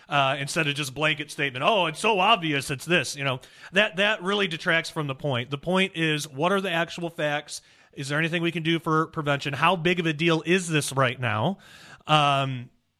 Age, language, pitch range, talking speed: 30-49, English, 150-175 Hz, 215 wpm